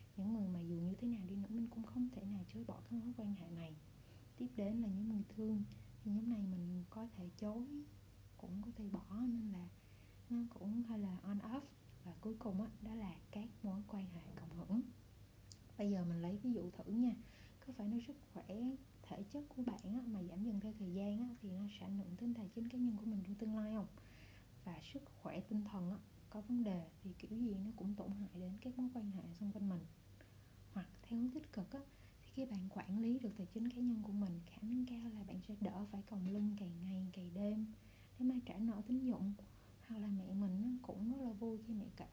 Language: Vietnamese